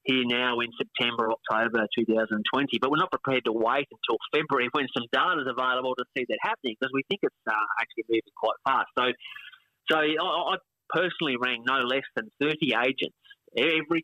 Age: 30-49